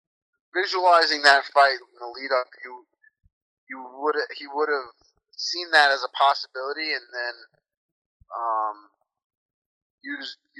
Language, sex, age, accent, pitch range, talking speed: English, male, 30-49, American, 130-175 Hz, 130 wpm